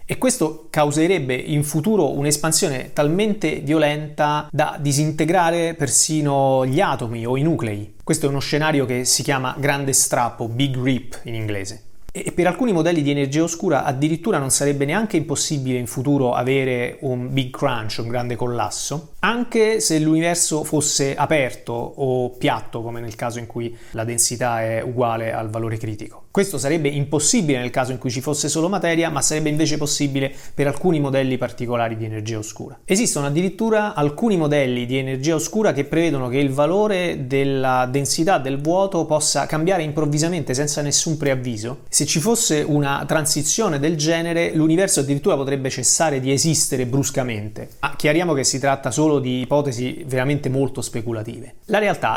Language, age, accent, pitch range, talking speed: Italian, 30-49, native, 125-160 Hz, 160 wpm